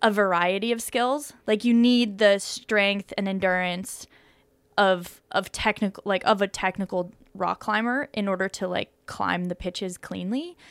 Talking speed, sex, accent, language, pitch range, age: 155 wpm, female, American, English, 185-225 Hz, 20-39